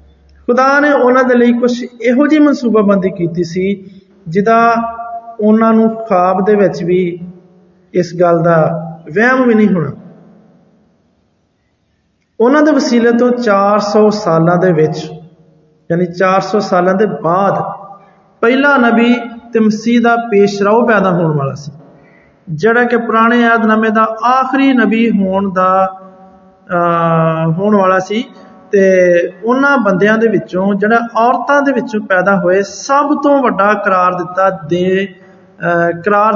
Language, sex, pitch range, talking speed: Hindi, male, 185-235 Hz, 85 wpm